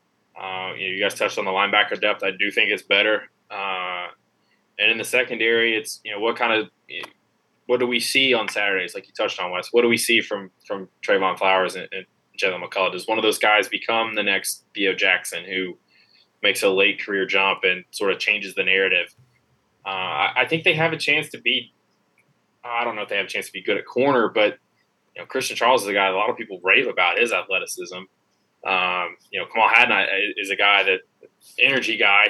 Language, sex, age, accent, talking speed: English, male, 20-39, American, 225 wpm